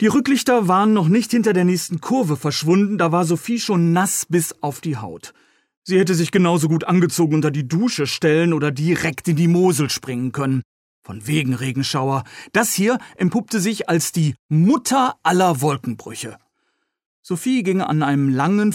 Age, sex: 40-59, male